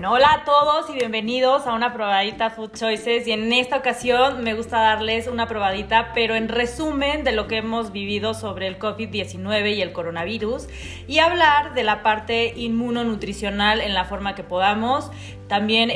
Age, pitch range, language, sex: 30-49, 205-245 Hz, Spanish, female